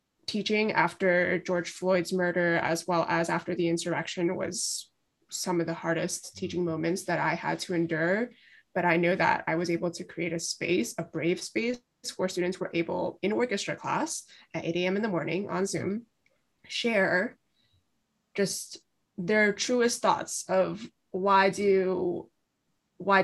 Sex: female